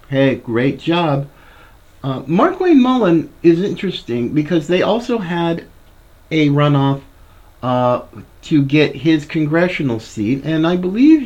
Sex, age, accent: male, 50-69, American